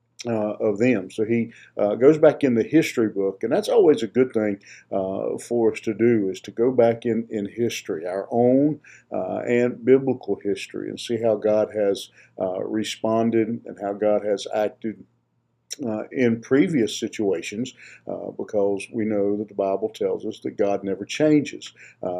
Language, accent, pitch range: English, American, 100-115 Hz